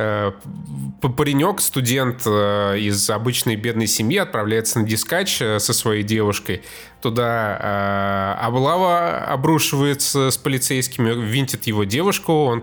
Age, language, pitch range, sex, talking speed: 20-39, Russian, 105-140 Hz, male, 100 wpm